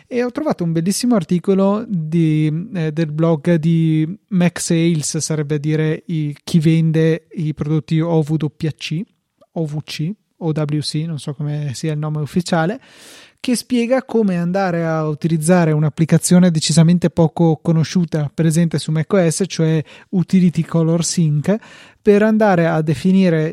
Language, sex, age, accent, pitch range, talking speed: Italian, male, 30-49, native, 155-175 Hz, 135 wpm